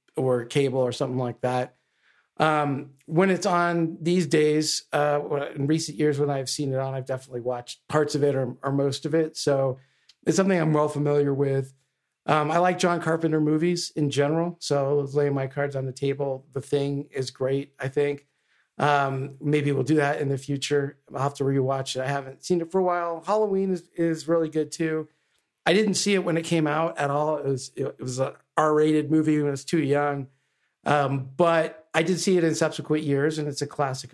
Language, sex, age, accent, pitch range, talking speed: English, male, 40-59, American, 130-155 Hz, 220 wpm